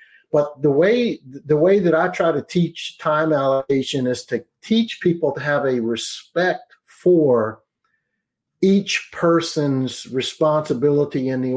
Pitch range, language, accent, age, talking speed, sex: 135-165 Hz, English, American, 50-69, 135 wpm, male